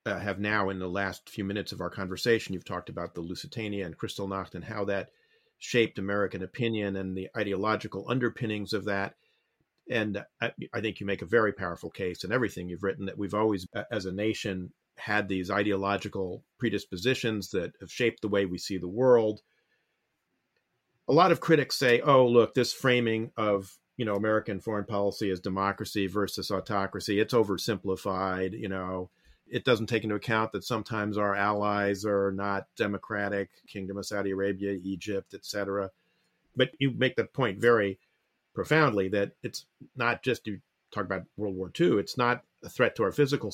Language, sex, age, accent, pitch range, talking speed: English, male, 40-59, American, 95-115 Hz, 180 wpm